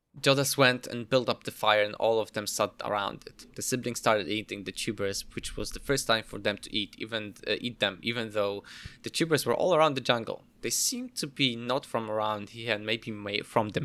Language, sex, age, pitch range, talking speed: English, male, 20-39, 110-140 Hz, 235 wpm